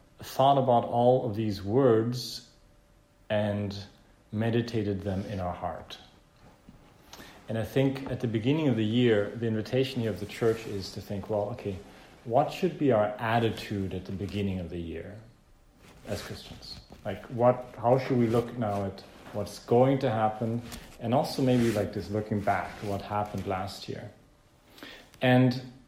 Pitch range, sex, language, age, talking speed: 100-125 Hz, male, English, 40-59, 160 wpm